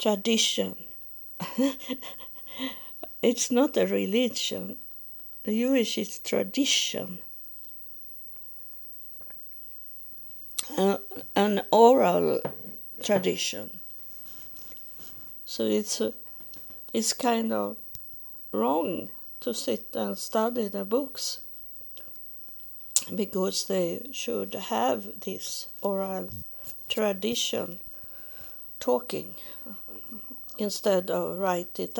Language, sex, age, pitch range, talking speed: English, female, 60-79, 190-260 Hz, 70 wpm